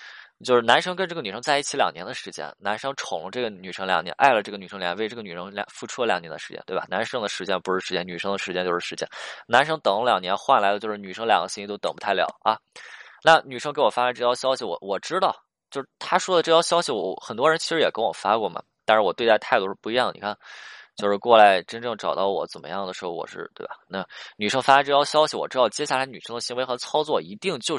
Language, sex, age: Chinese, male, 20-39